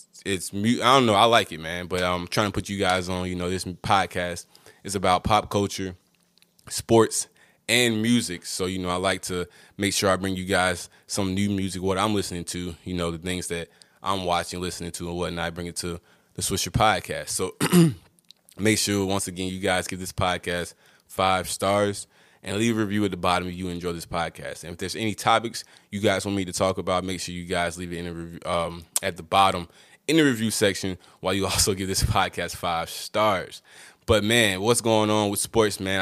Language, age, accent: English, 20-39, American